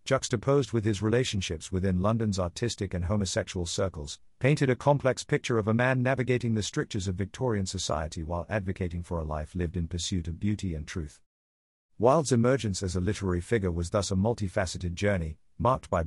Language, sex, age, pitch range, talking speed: English, male, 50-69, 90-125 Hz, 180 wpm